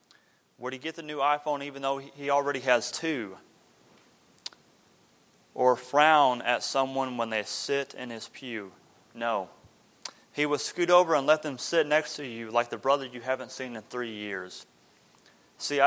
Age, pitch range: 30-49, 125-150 Hz